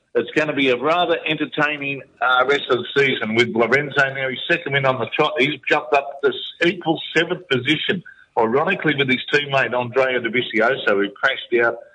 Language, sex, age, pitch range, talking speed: English, male, 50-69, 120-145 Hz, 185 wpm